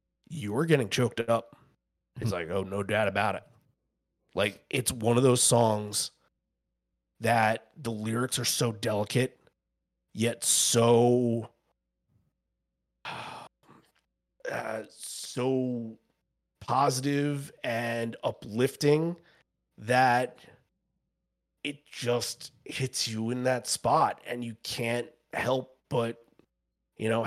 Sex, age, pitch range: male, 30-49, 105-125 Hz